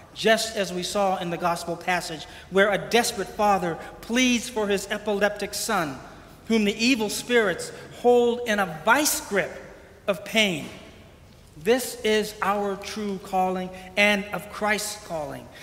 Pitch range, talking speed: 180-230 Hz, 140 wpm